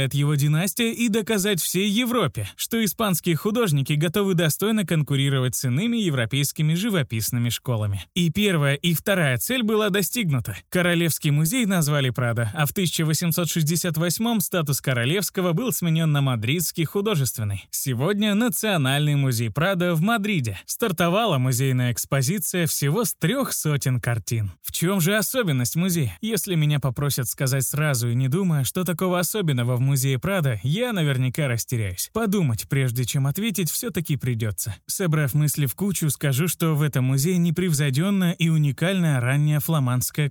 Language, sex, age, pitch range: Russian, male, 20-39, 135-185 Hz